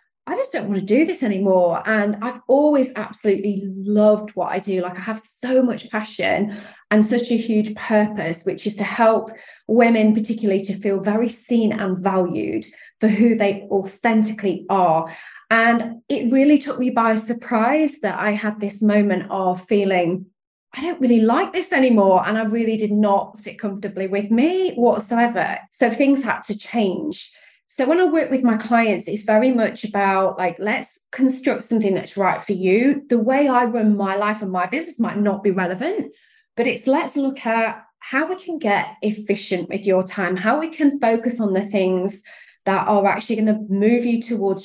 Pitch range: 195-240 Hz